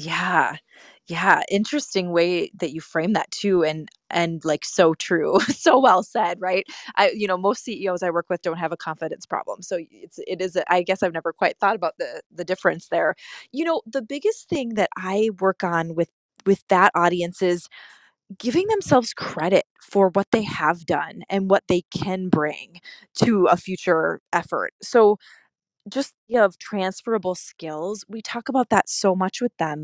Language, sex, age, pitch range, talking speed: English, female, 20-39, 175-225 Hz, 185 wpm